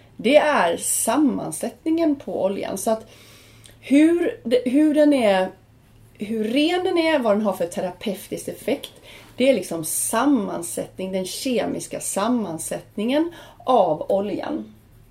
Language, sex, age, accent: Swedish, female, 30-49, native